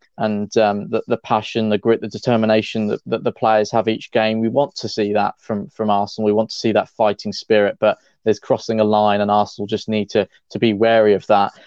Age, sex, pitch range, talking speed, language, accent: 20-39, male, 105-120 Hz, 235 wpm, English, British